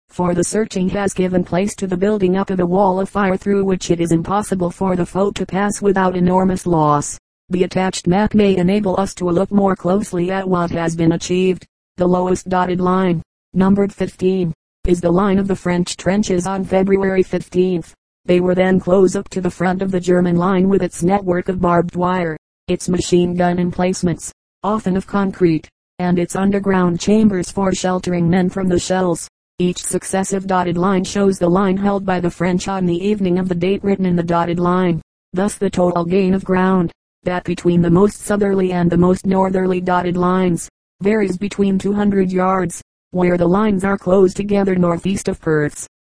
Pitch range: 180-195 Hz